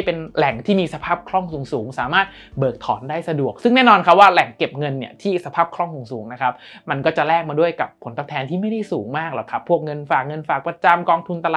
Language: Thai